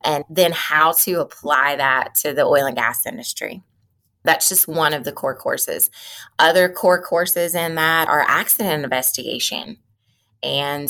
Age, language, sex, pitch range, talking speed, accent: 20-39, English, female, 145-185 Hz, 155 wpm, American